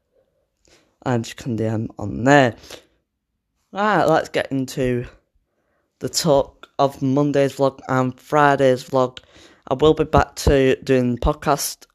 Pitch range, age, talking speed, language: 120-145 Hz, 10-29, 130 wpm, English